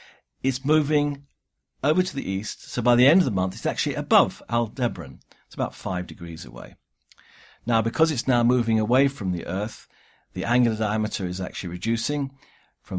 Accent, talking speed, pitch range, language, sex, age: British, 175 wpm, 95-135 Hz, English, male, 50-69